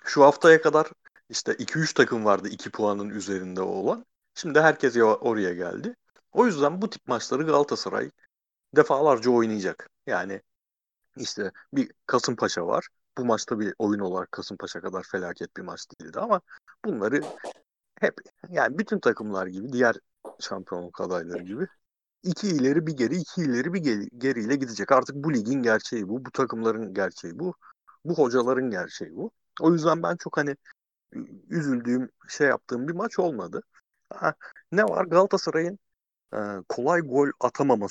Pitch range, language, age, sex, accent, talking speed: 105-155 Hz, Turkish, 60-79, male, native, 145 wpm